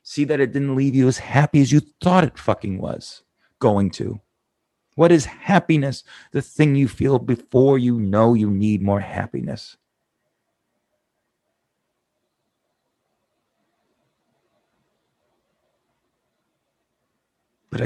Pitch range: 100-135 Hz